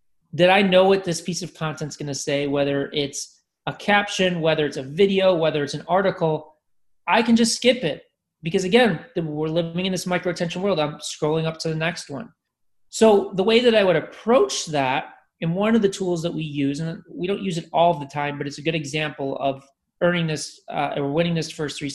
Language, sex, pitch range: English, male, 150-195 Hz